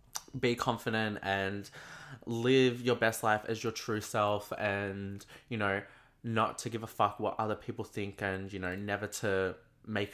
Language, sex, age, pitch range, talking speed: English, male, 20-39, 105-125 Hz, 170 wpm